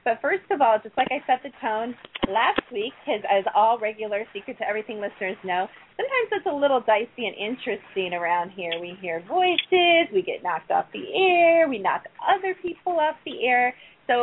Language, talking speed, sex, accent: English, 195 wpm, female, American